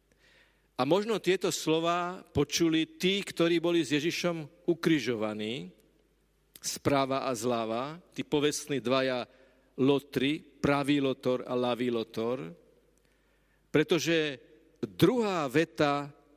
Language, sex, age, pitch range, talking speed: Slovak, male, 40-59, 130-165 Hz, 95 wpm